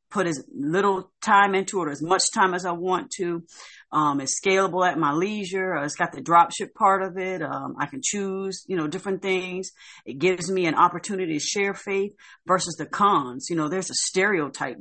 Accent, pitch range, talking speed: American, 160-185 Hz, 205 wpm